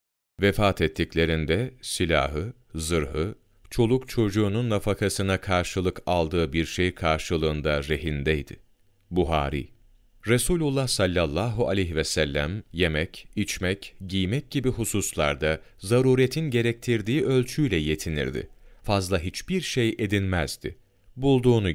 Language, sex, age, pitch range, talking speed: Turkish, male, 40-59, 80-120 Hz, 90 wpm